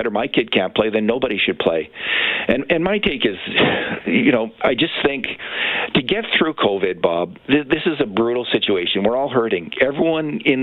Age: 50-69